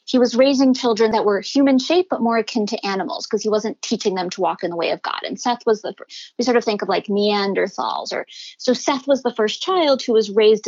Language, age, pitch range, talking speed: English, 20-39, 210-265 Hz, 260 wpm